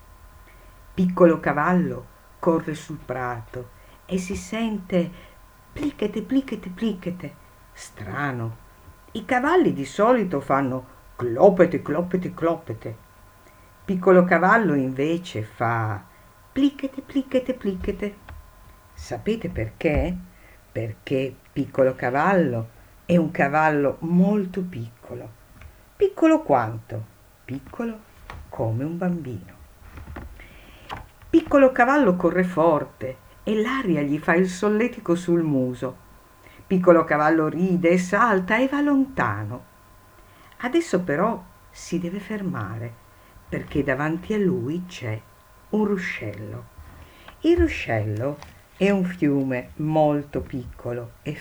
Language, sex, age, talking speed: Italian, female, 50-69, 95 wpm